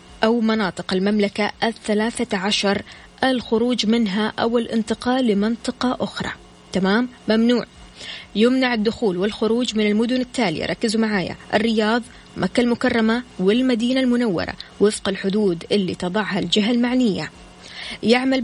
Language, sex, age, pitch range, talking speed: Arabic, female, 20-39, 200-245 Hz, 105 wpm